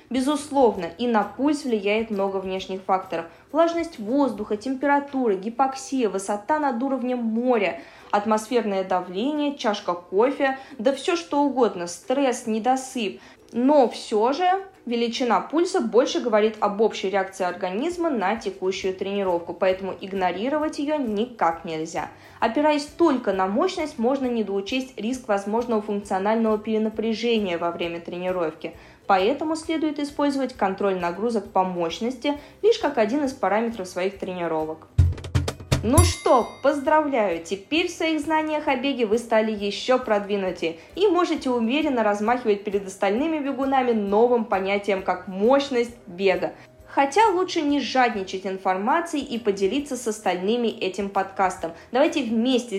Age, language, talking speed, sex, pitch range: 20-39, Russian, 125 wpm, female, 195-275 Hz